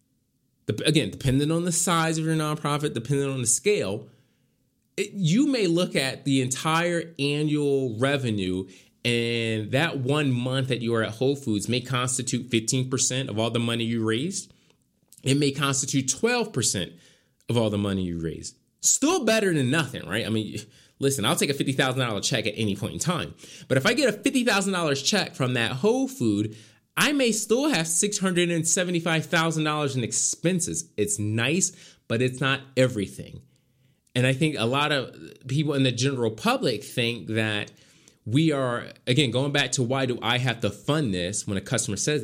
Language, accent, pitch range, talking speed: English, American, 115-150 Hz, 170 wpm